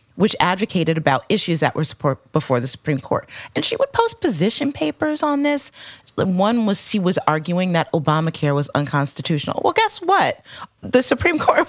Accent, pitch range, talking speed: American, 155-235 Hz, 175 wpm